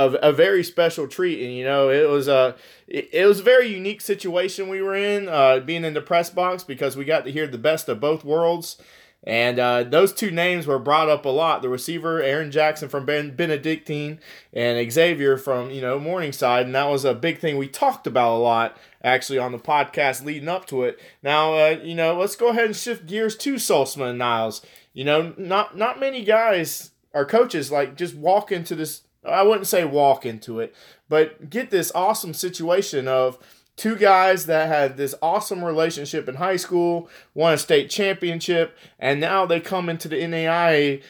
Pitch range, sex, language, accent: 140-190 Hz, male, English, American